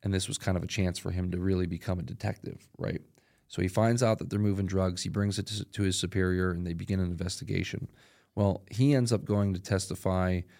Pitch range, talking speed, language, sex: 95-105 Hz, 230 wpm, English, male